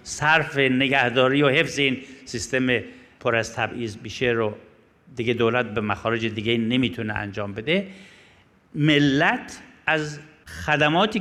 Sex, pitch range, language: male, 115-150 Hz, Persian